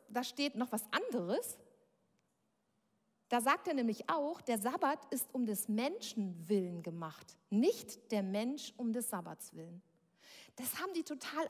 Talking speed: 150 wpm